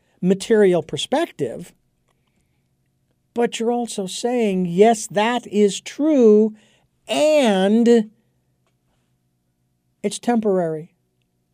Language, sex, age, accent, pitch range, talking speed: English, male, 50-69, American, 155-225 Hz, 70 wpm